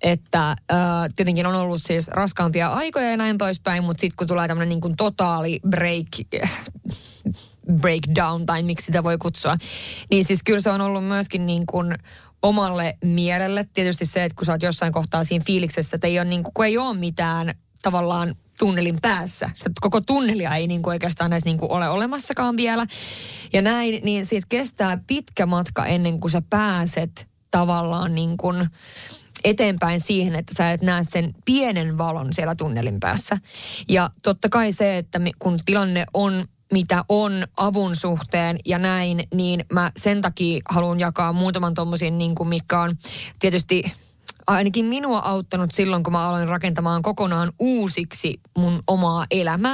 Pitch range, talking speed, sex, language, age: 170-195 Hz, 155 wpm, female, Finnish, 20-39